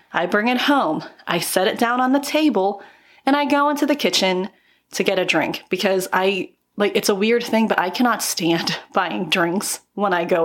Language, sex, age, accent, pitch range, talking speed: English, female, 30-49, American, 190-260 Hz, 210 wpm